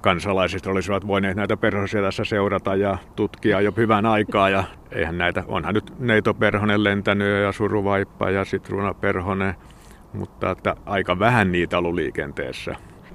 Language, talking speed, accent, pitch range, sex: Finnish, 140 wpm, native, 85-105 Hz, male